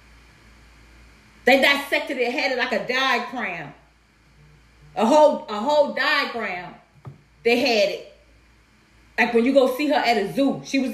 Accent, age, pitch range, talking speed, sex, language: American, 30-49, 235-295 Hz, 150 wpm, female, English